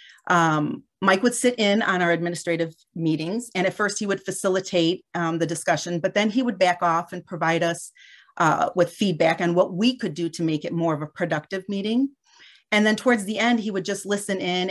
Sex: female